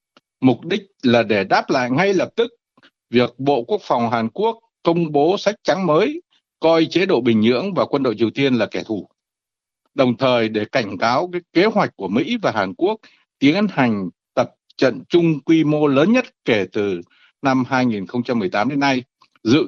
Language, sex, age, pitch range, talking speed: Vietnamese, male, 60-79, 120-160 Hz, 190 wpm